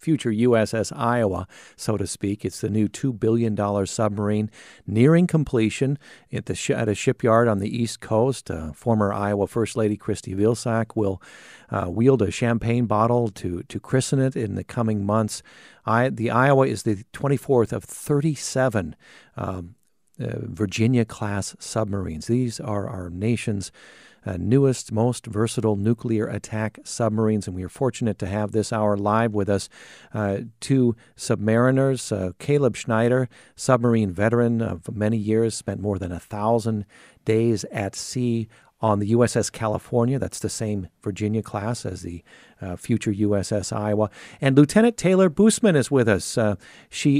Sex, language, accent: male, English, American